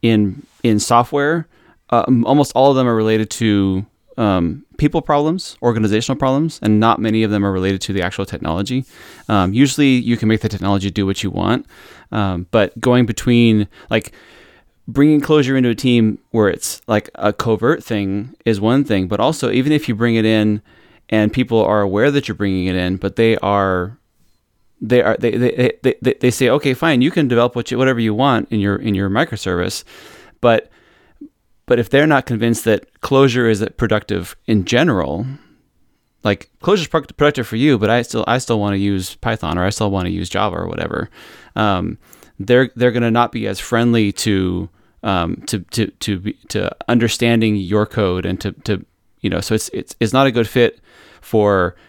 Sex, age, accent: male, 20-39, American